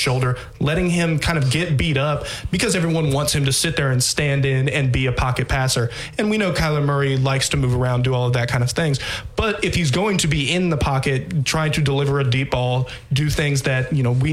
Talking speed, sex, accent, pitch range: 250 wpm, male, American, 130-155 Hz